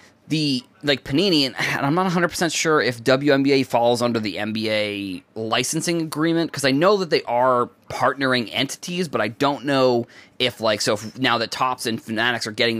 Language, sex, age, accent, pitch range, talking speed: English, male, 20-39, American, 115-145 Hz, 185 wpm